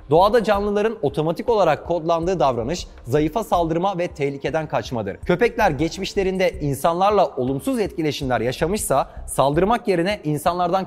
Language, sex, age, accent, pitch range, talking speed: Turkish, male, 30-49, native, 145-200 Hz, 110 wpm